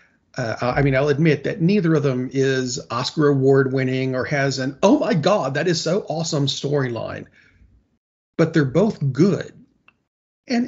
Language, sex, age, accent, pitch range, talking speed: English, male, 40-59, American, 130-170 Hz, 165 wpm